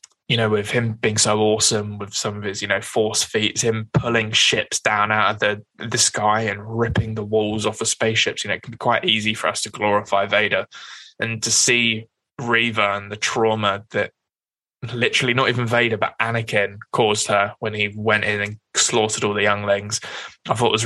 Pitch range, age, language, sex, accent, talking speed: 105-115 Hz, 20-39, English, male, British, 205 wpm